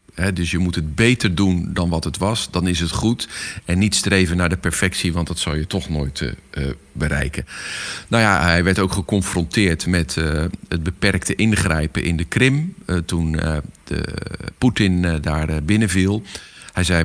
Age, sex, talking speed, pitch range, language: 50-69, male, 185 wpm, 80-95 Hz, Dutch